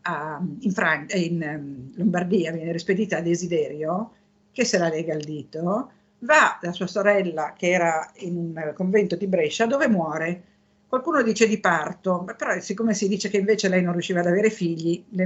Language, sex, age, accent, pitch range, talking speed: Italian, female, 50-69, native, 170-215 Hz, 190 wpm